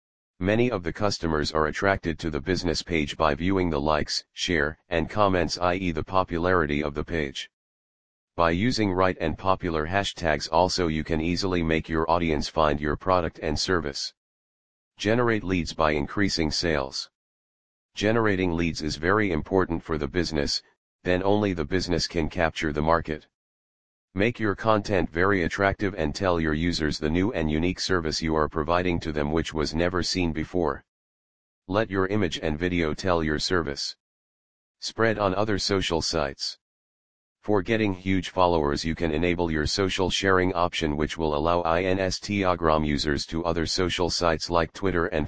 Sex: male